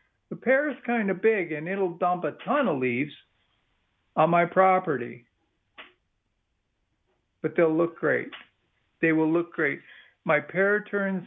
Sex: male